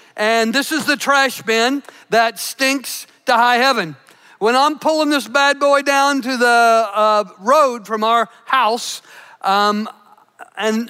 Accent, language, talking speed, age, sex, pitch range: American, English, 150 wpm, 50-69, male, 255-335 Hz